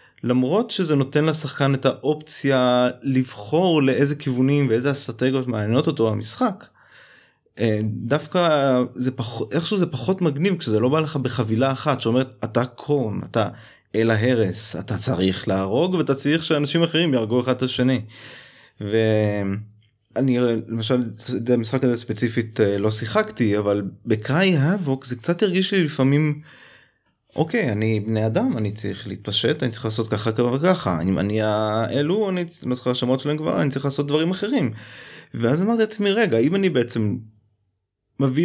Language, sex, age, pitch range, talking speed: Hebrew, male, 20-39, 110-145 Hz, 150 wpm